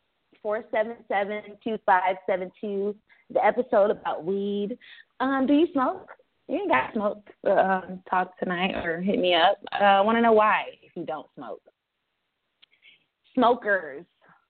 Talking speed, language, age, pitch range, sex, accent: 155 wpm, English, 30-49, 170-225 Hz, female, American